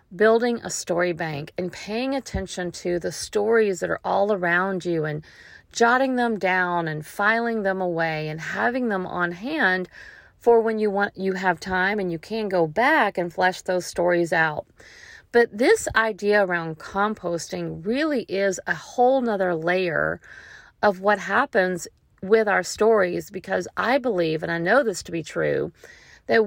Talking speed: 165 wpm